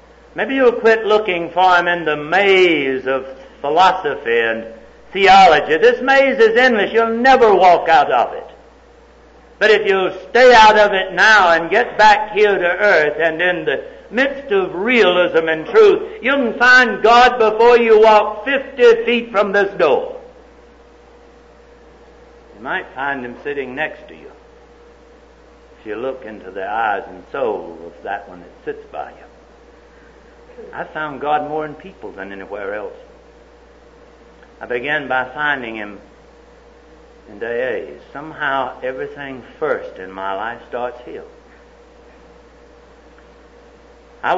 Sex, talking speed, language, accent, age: male, 140 wpm, English, American, 60-79